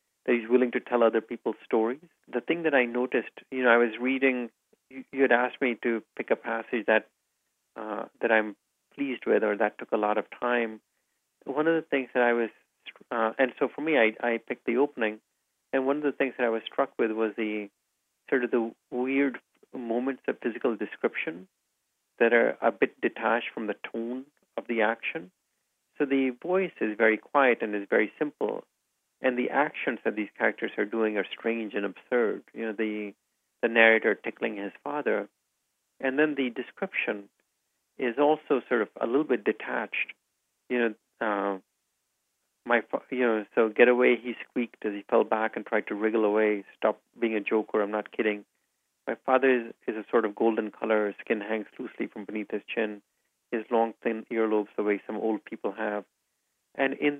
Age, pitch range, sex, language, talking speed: 40-59, 110-125 Hz, male, English, 190 wpm